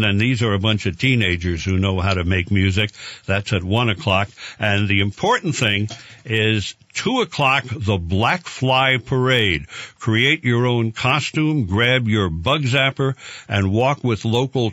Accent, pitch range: American, 100-125 Hz